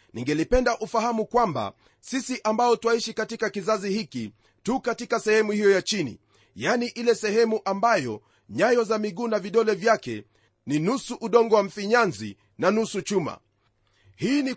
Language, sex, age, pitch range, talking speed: Swahili, male, 40-59, 175-235 Hz, 145 wpm